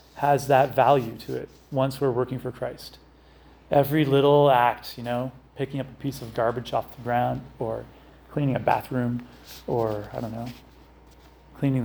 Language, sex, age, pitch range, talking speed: English, male, 30-49, 115-135 Hz, 165 wpm